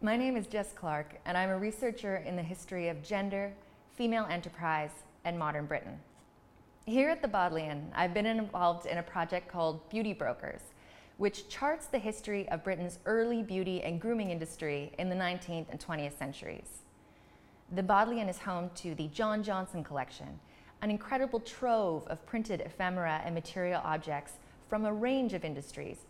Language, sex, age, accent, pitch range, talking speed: English, female, 20-39, American, 165-215 Hz, 165 wpm